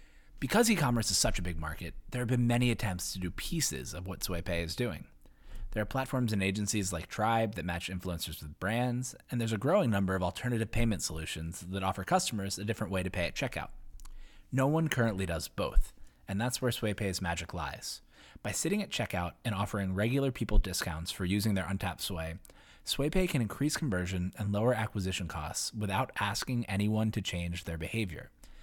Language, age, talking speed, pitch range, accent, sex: English, 20-39, 195 wpm, 90-120 Hz, American, male